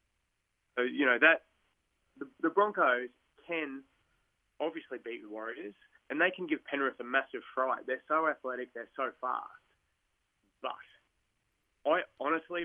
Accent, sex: Australian, male